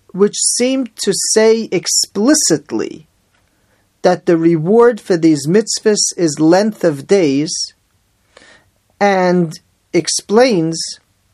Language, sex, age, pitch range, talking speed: English, male, 40-59, 150-195 Hz, 90 wpm